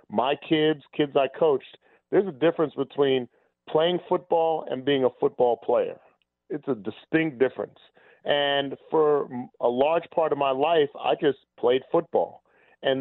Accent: American